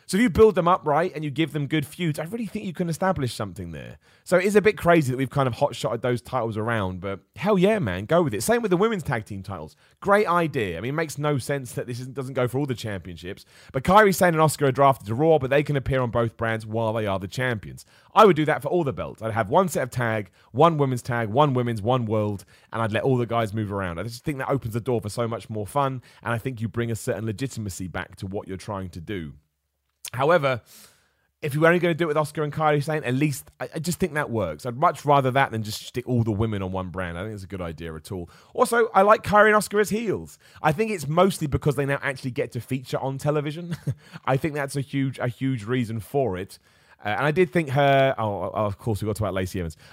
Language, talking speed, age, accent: English, 280 wpm, 30-49, British